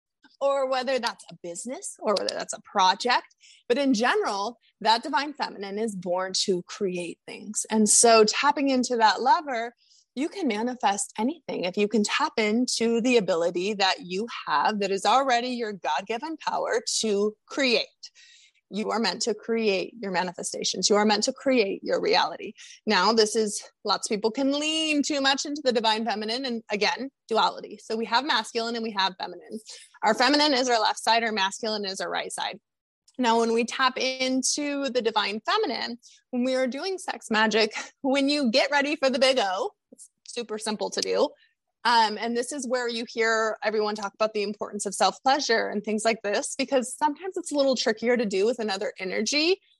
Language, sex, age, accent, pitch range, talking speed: English, female, 20-39, American, 215-280 Hz, 190 wpm